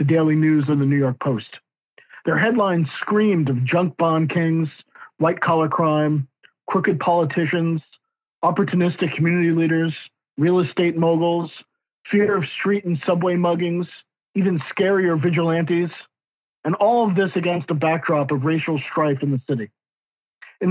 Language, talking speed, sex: English, 140 wpm, male